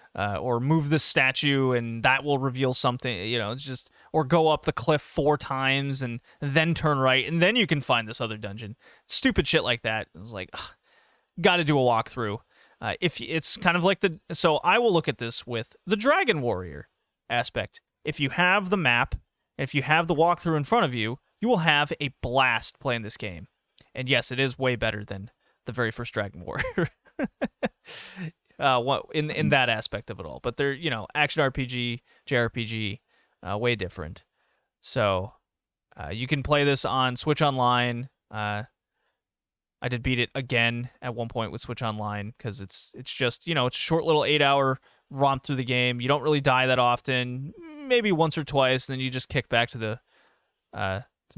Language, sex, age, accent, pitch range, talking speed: English, male, 30-49, American, 115-150 Hz, 200 wpm